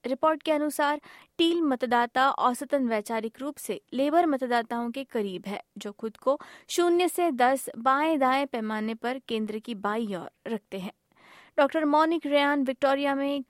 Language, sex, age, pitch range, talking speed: Hindi, female, 20-39, 165-260 Hz, 150 wpm